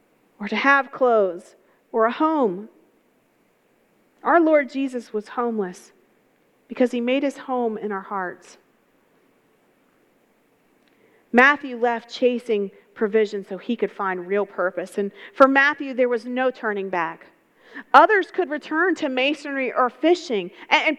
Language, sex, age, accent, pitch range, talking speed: English, female, 40-59, American, 215-285 Hz, 130 wpm